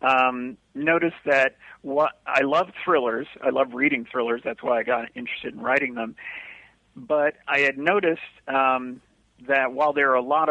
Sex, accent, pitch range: male, American, 125-145 Hz